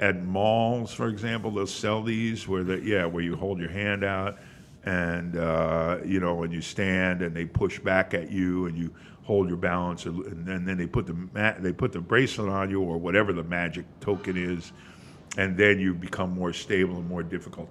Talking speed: 215 wpm